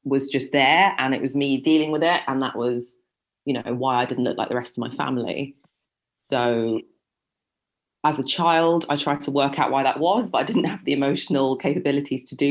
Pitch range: 130-150 Hz